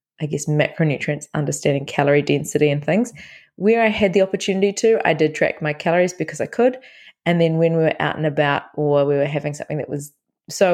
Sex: female